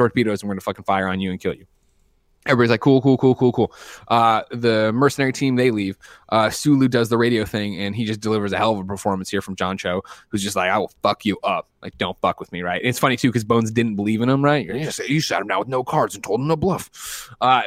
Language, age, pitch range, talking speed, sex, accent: English, 20-39, 100-125 Hz, 290 wpm, male, American